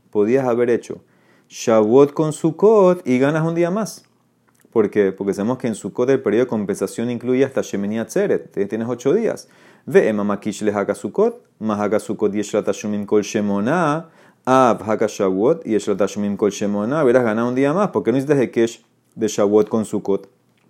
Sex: male